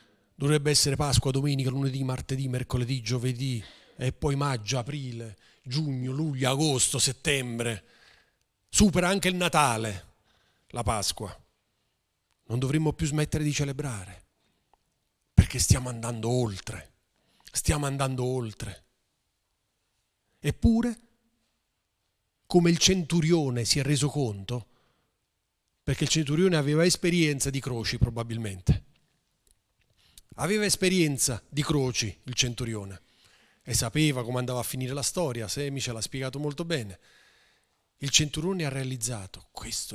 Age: 40-59